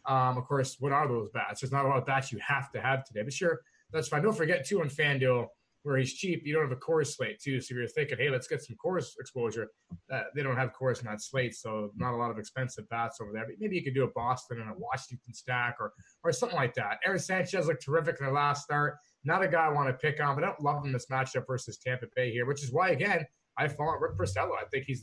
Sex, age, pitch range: male, 30-49, 130-175 Hz